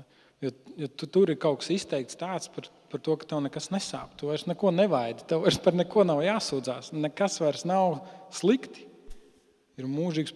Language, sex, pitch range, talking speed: English, male, 135-160 Hz, 180 wpm